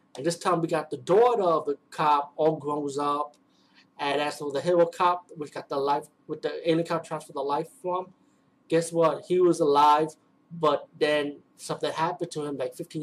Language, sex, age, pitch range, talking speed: English, male, 20-39, 145-170 Hz, 205 wpm